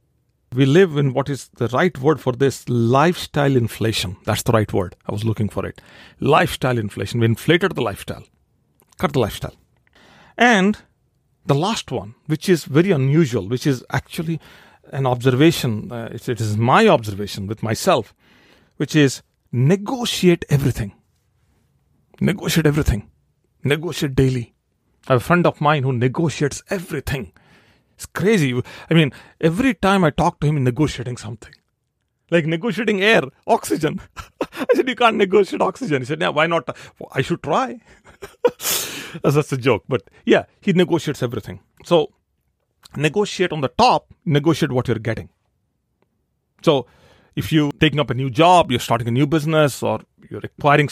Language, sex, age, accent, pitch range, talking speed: English, male, 40-59, Indian, 120-165 Hz, 155 wpm